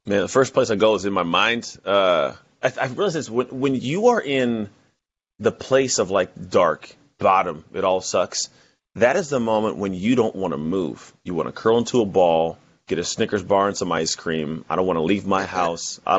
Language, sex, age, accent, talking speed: English, male, 30-49, American, 230 wpm